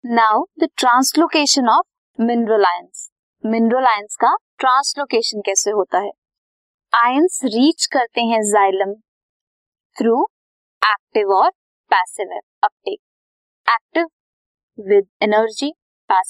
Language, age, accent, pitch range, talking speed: Hindi, 20-39, native, 215-315 Hz, 60 wpm